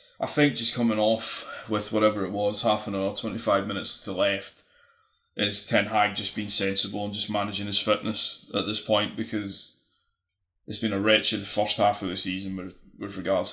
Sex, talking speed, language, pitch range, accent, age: male, 190 wpm, English, 100-110 Hz, British, 20-39